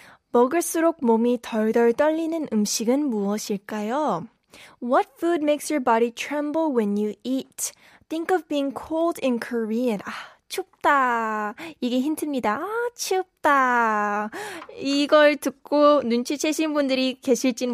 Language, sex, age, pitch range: Korean, female, 10-29, 230-295 Hz